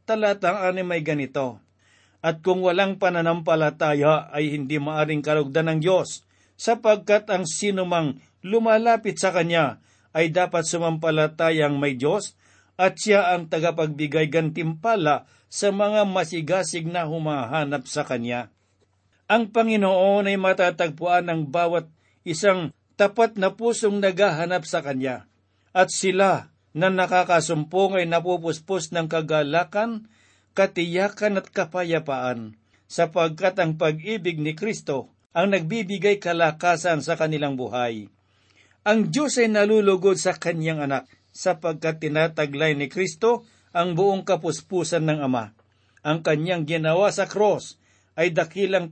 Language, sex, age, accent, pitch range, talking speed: Filipino, male, 50-69, native, 150-190 Hz, 115 wpm